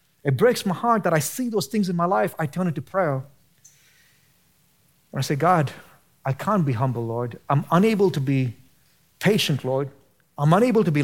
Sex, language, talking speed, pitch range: male, English, 195 wpm, 140-180 Hz